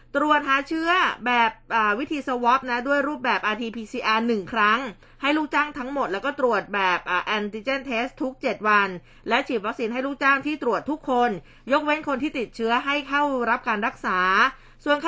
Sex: female